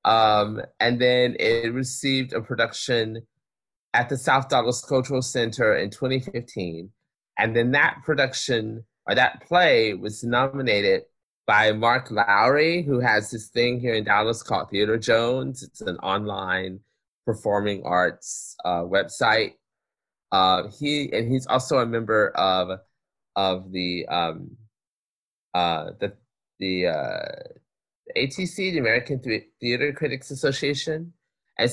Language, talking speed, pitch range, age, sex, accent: English, 125 wpm, 105-130 Hz, 30-49, male, American